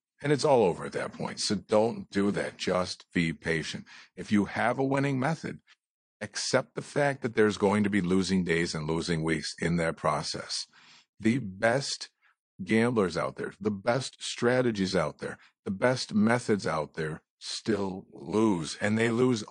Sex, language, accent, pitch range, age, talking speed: male, English, American, 90-125 Hz, 50-69, 170 wpm